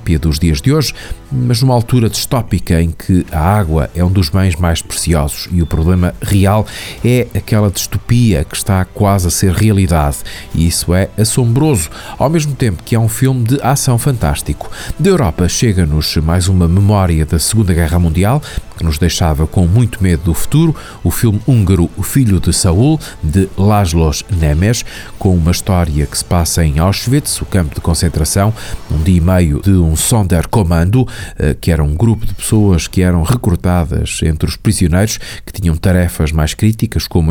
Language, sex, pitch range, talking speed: Portuguese, male, 85-115 Hz, 175 wpm